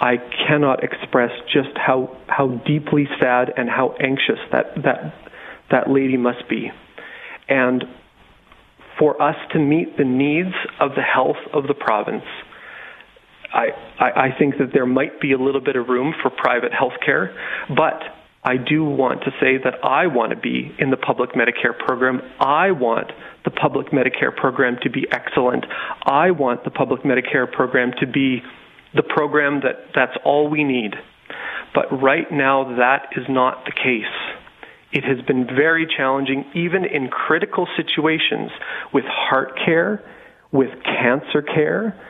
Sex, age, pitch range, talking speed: male, 40-59, 125-150 Hz, 155 wpm